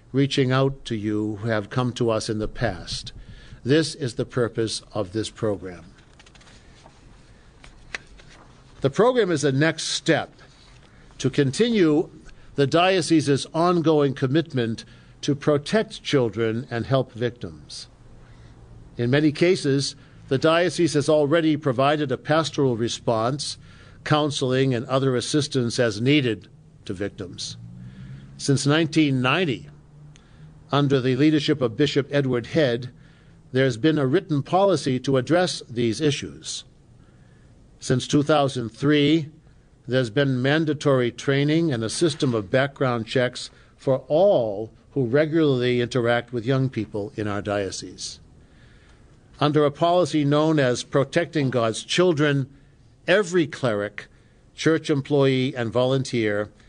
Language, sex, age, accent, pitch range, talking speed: English, male, 60-79, American, 120-150 Hz, 115 wpm